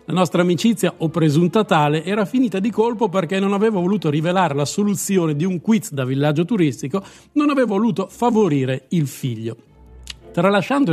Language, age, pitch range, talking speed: Italian, 50-69, 155-195 Hz, 165 wpm